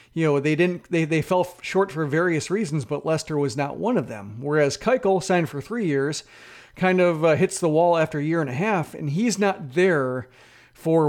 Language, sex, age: English, male, 40-59